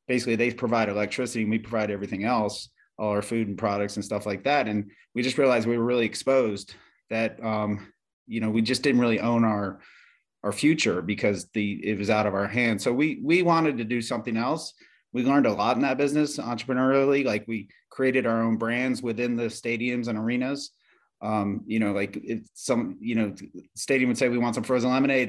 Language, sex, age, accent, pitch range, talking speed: English, male, 30-49, American, 110-135 Hz, 210 wpm